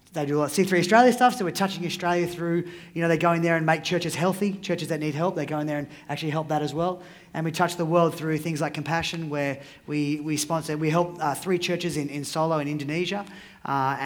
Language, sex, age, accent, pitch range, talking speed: English, male, 20-39, Australian, 140-170 Hz, 260 wpm